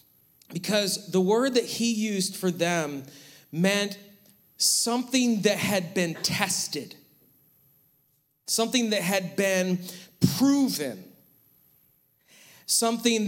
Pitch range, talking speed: 175-235 Hz, 90 wpm